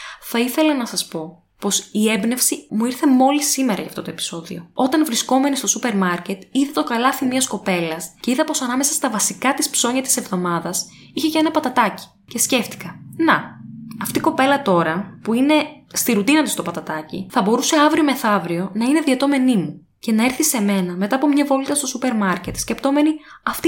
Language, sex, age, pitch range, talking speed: Greek, female, 20-39, 190-290 Hz, 195 wpm